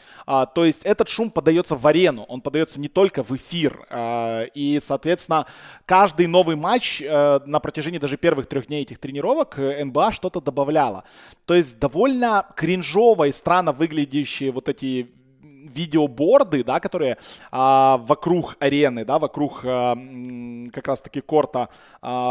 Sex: male